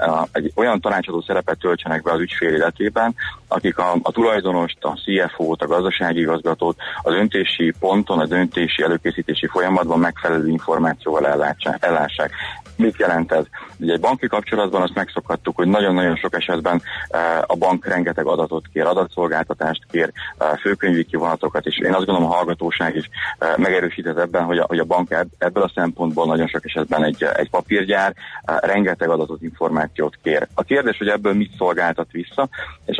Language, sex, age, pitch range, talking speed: Hungarian, male, 30-49, 80-95 Hz, 155 wpm